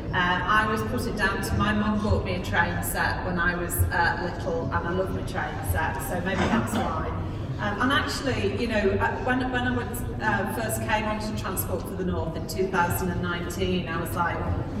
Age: 30-49